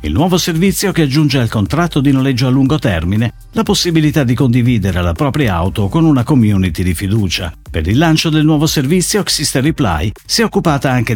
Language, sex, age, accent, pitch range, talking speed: Italian, male, 50-69, native, 100-155 Hz, 195 wpm